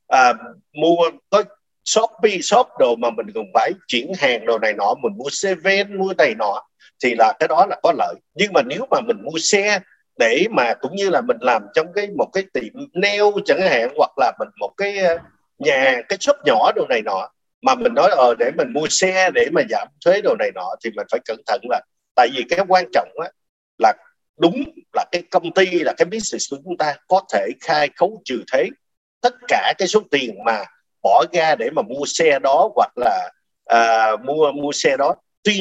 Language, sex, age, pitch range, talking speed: Vietnamese, male, 50-69, 175-260 Hz, 220 wpm